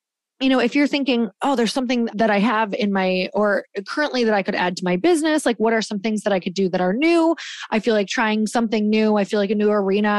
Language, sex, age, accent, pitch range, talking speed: English, female, 20-39, American, 205-245 Hz, 270 wpm